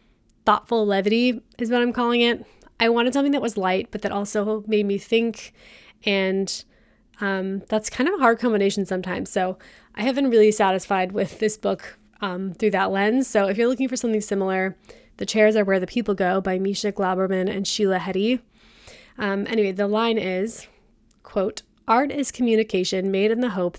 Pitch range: 195-230 Hz